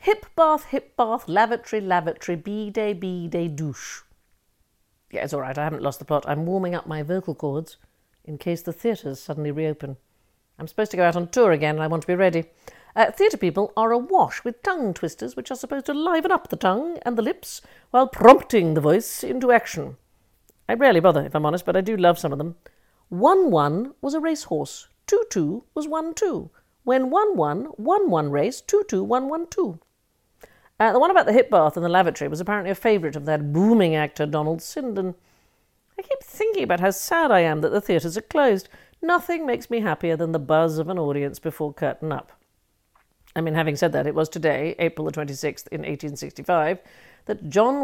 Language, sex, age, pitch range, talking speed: English, female, 50-69, 155-235 Hz, 205 wpm